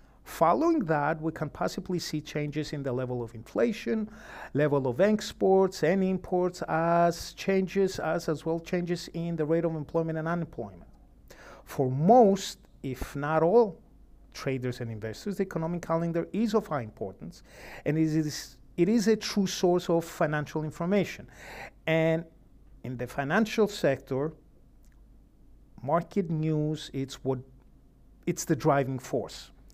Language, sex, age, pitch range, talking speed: English, male, 50-69, 145-180 Hz, 140 wpm